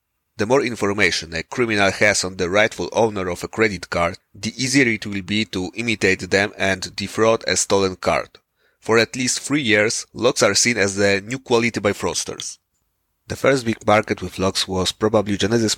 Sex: male